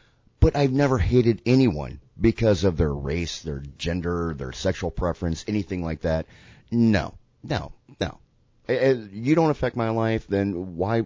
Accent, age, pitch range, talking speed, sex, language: American, 30-49, 85-120 Hz, 150 wpm, male, English